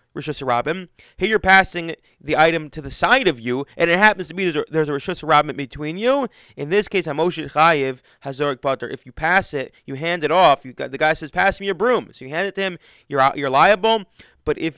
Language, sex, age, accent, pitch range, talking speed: English, male, 20-39, American, 135-175 Hz, 210 wpm